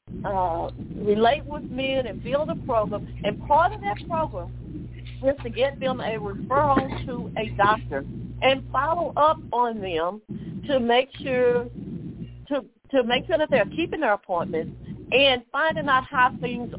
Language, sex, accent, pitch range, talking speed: English, female, American, 190-260 Hz, 155 wpm